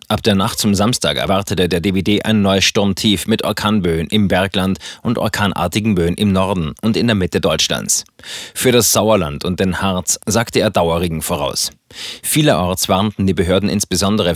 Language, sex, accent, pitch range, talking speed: German, male, German, 95-110 Hz, 165 wpm